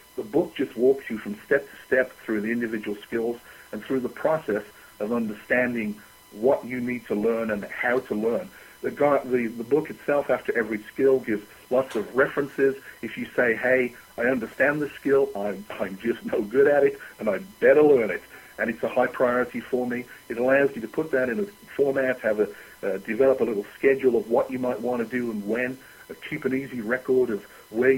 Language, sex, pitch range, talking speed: English, male, 115-145 Hz, 205 wpm